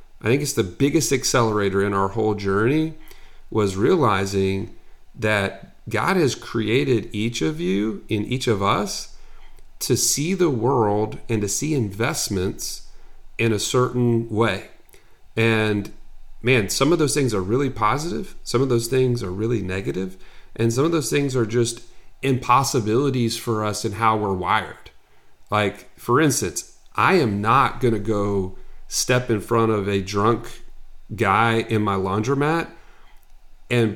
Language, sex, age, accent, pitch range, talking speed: English, male, 40-59, American, 105-135 Hz, 150 wpm